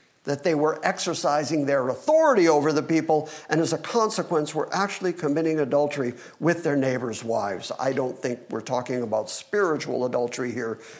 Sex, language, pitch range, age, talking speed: male, English, 135-180 Hz, 50-69, 165 wpm